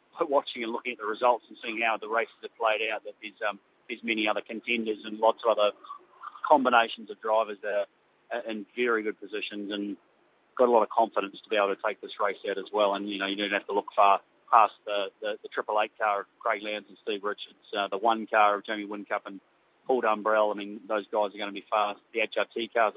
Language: English